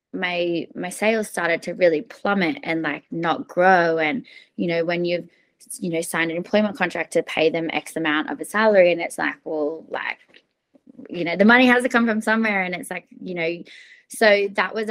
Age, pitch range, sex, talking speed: 20-39, 170-205 Hz, female, 210 wpm